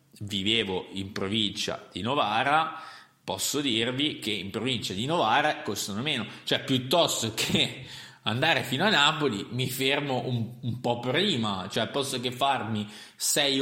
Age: 30-49